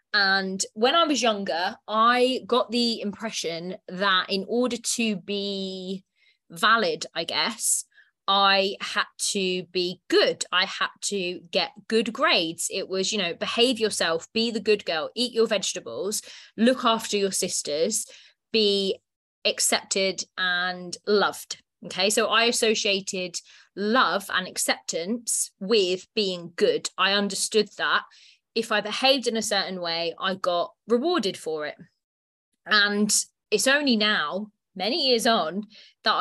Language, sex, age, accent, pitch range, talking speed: English, female, 20-39, British, 185-225 Hz, 135 wpm